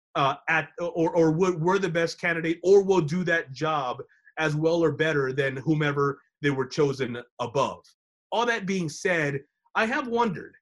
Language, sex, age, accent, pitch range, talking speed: English, male, 30-49, American, 145-195 Hz, 170 wpm